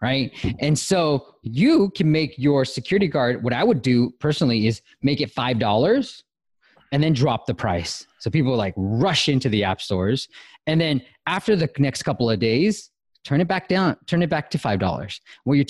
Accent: American